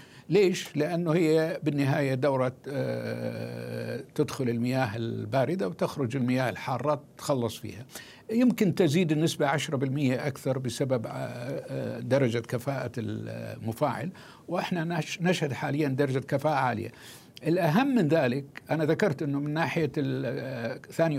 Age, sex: 60-79, male